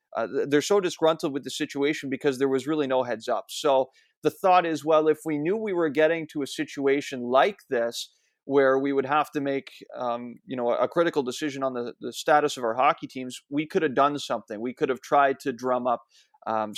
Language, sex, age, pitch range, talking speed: English, male, 30-49, 130-155 Hz, 225 wpm